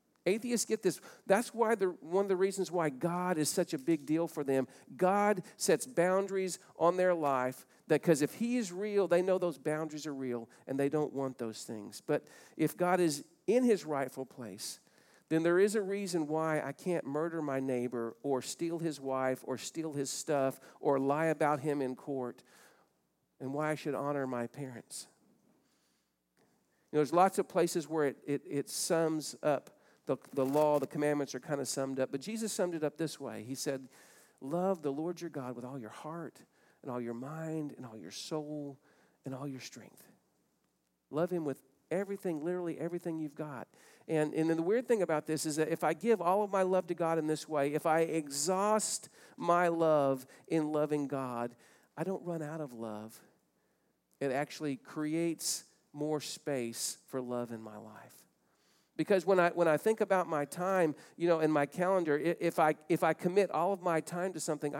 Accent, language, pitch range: American, English, 140-175 Hz